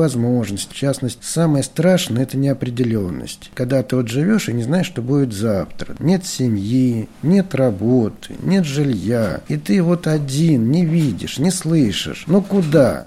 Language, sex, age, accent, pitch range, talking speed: Russian, male, 50-69, native, 105-155 Hz, 155 wpm